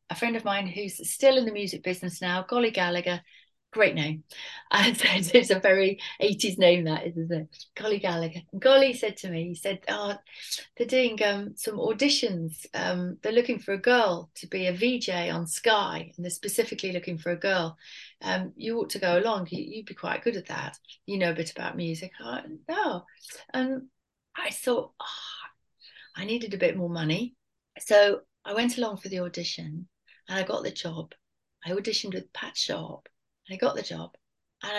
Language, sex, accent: English, female, British